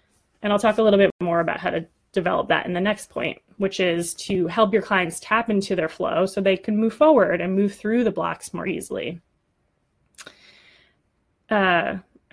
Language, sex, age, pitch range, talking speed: English, female, 20-39, 180-220 Hz, 190 wpm